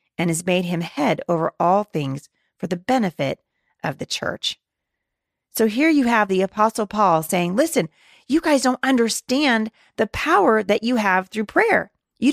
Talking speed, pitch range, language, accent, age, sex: 170 wpm, 190-245 Hz, English, American, 40-59, female